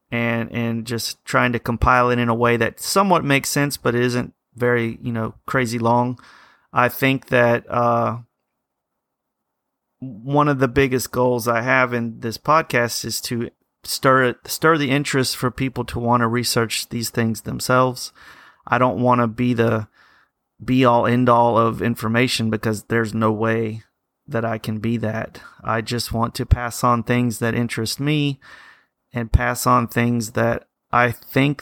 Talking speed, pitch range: 165 wpm, 115-135 Hz